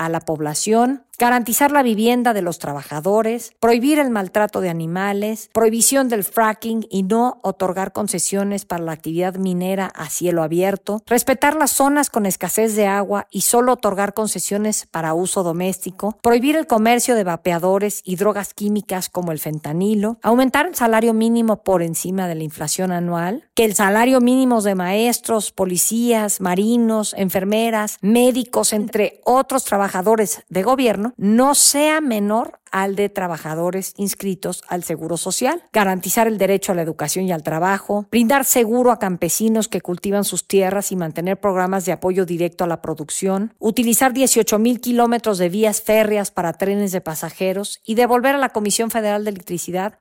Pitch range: 180-225 Hz